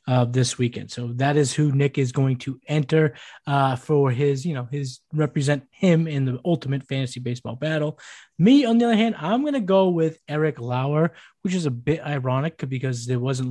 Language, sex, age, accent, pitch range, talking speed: English, male, 20-39, American, 125-155 Hz, 200 wpm